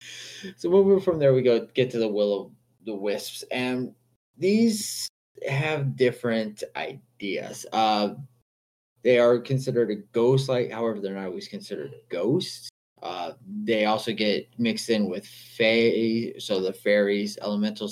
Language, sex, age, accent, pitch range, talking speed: English, male, 20-39, American, 100-130 Hz, 145 wpm